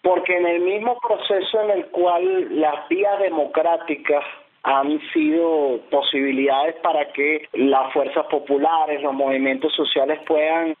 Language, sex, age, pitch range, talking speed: Spanish, male, 30-49, 130-165 Hz, 130 wpm